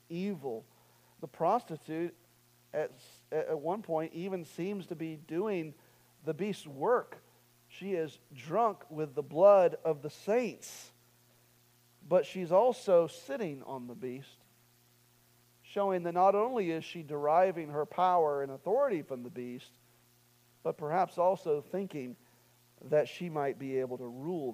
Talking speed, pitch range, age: 135 wpm, 120-165 Hz, 50-69